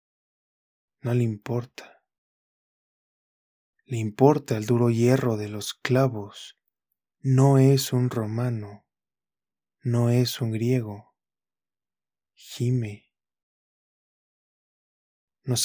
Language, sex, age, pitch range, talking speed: Spanish, male, 20-39, 105-125 Hz, 80 wpm